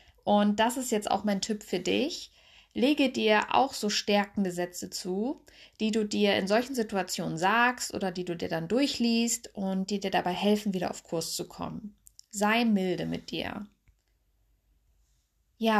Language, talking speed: German, 165 wpm